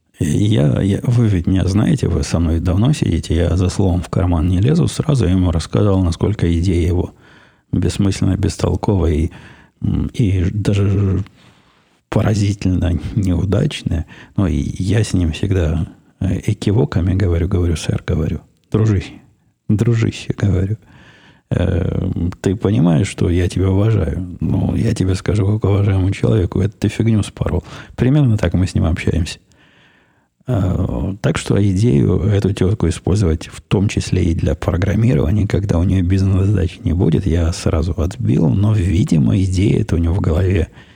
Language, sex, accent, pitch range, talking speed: Russian, male, native, 90-110 Hz, 145 wpm